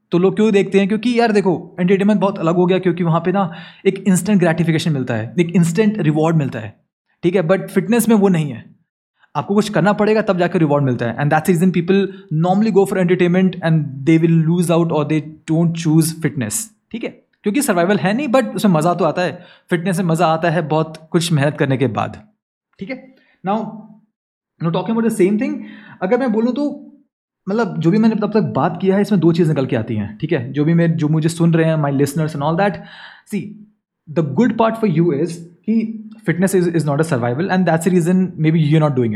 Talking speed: 235 wpm